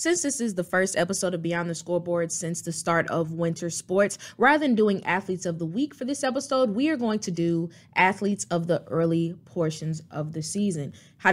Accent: American